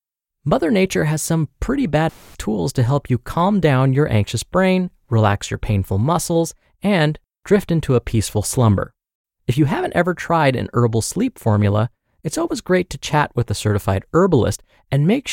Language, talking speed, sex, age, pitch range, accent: English, 175 wpm, male, 20-39, 115-170 Hz, American